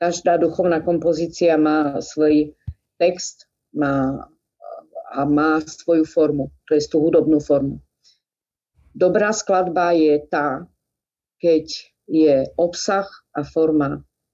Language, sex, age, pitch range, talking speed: Slovak, female, 50-69, 155-185 Hz, 105 wpm